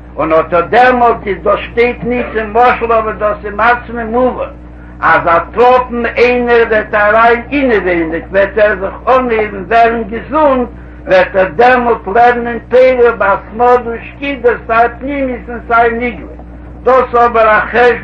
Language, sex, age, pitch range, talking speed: Hebrew, male, 60-79, 200-240 Hz, 110 wpm